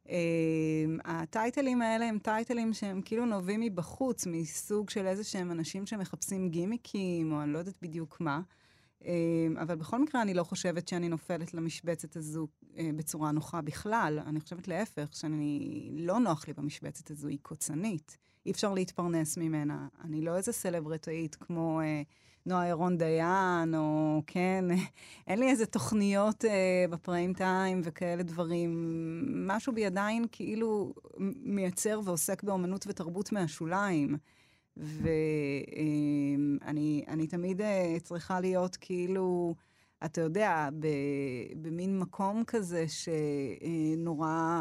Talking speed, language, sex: 125 wpm, Hebrew, female